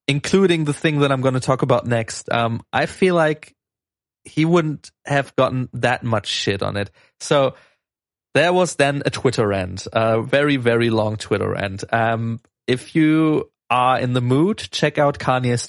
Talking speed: 175 wpm